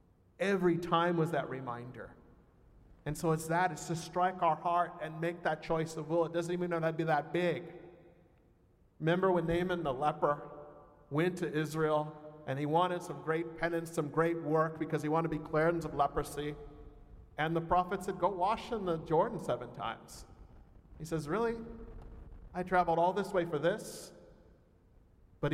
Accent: American